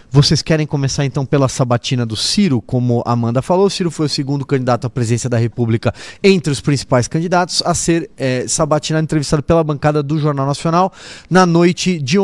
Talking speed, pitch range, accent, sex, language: 185 wpm, 135-175 Hz, Brazilian, male, Portuguese